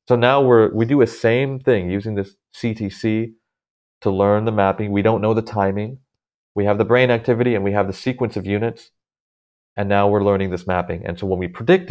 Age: 30-49